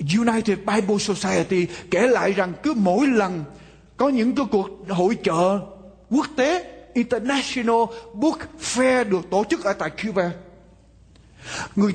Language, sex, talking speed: Vietnamese, male, 135 wpm